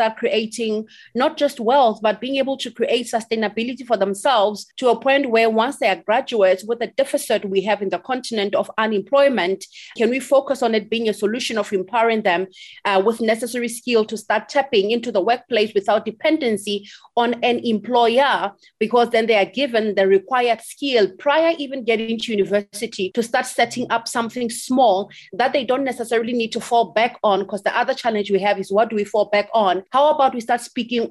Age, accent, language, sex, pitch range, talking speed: 30-49, South African, English, female, 210-250 Hz, 195 wpm